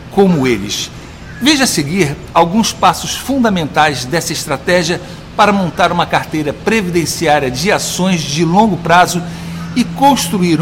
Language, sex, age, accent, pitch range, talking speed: Portuguese, male, 60-79, Brazilian, 160-205 Hz, 125 wpm